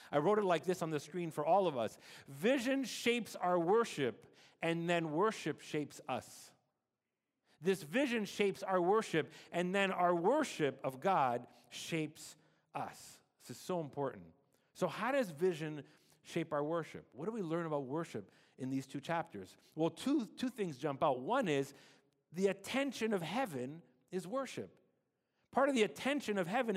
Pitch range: 145-200 Hz